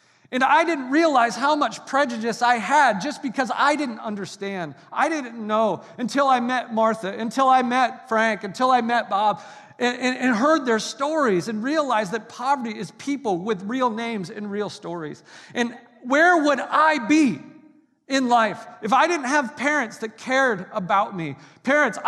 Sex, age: male, 40-59